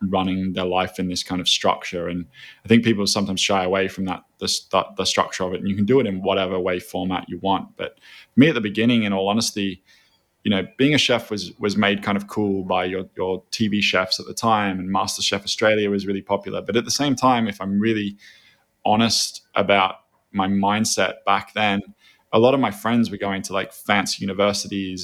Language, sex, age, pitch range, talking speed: English, male, 20-39, 95-105 Hz, 220 wpm